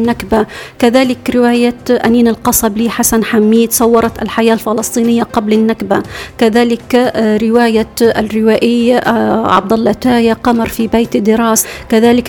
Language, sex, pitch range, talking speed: Arabic, female, 225-245 Hz, 115 wpm